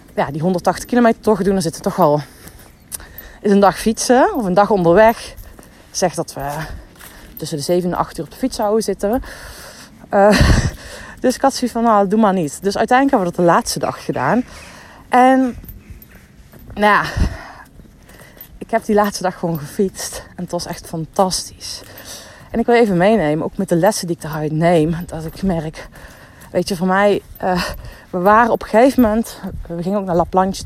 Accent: Dutch